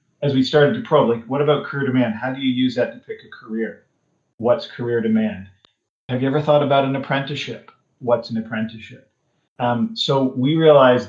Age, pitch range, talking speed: 40-59, 115-135 Hz, 195 wpm